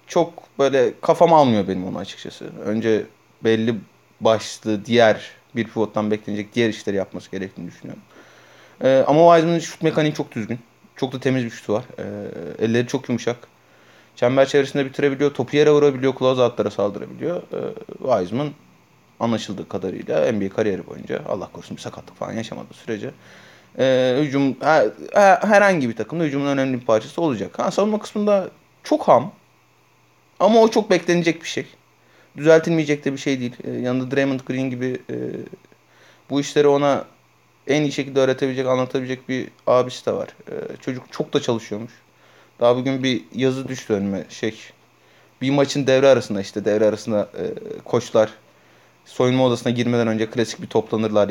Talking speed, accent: 155 wpm, native